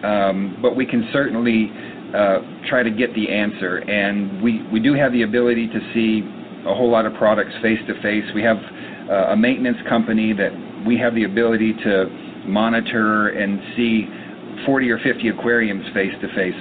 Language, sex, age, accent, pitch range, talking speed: English, male, 40-59, American, 105-120 Hz, 180 wpm